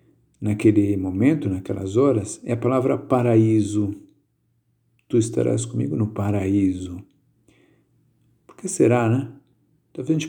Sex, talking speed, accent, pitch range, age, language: male, 115 wpm, Brazilian, 100-125 Hz, 50-69, Portuguese